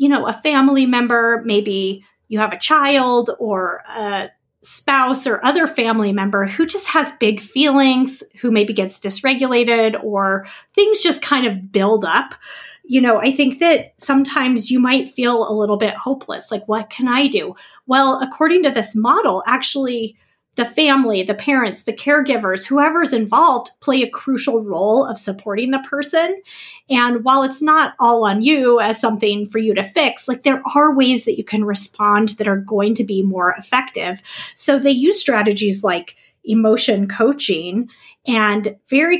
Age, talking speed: 30-49, 170 wpm